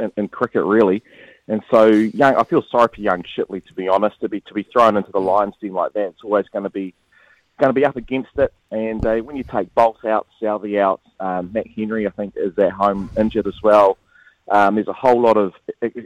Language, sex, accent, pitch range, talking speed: English, male, Australian, 100-120 Hz, 245 wpm